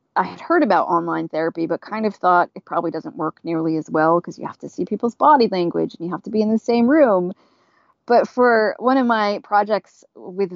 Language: English